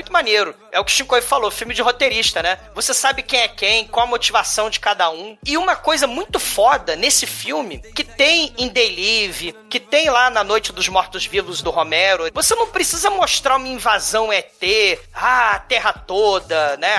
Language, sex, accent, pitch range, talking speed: Portuguese, male, Brazilian, 205-285 Hz, 200 wpm